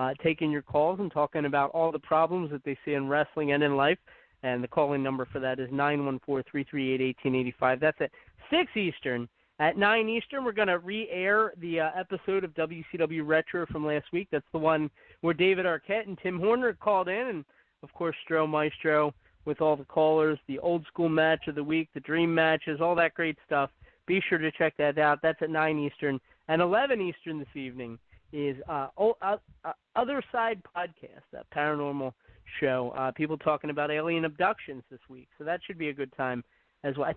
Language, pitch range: English, 140-175 Hz